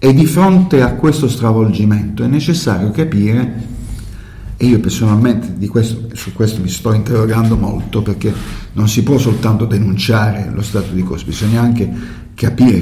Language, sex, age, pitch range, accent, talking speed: Italian, male, 50-69, 95-120 Hz, native, 155 wpm